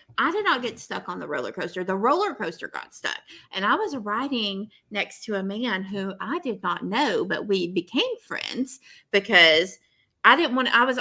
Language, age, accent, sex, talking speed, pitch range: English, 30-49, American, female, 200 wpm, 195-280 Hz